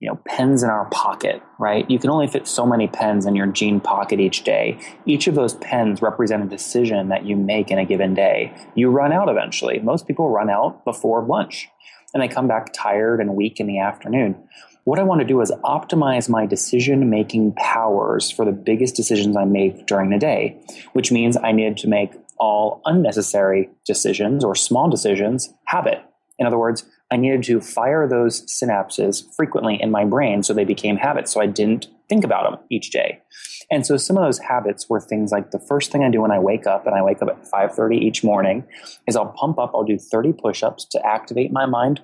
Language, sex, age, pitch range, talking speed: English, male, 20-39, 105-130 Hz, 215 wpm